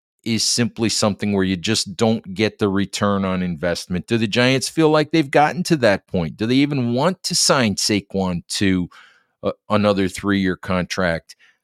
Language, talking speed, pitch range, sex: English, 170 wpm, 95-120 Hz, male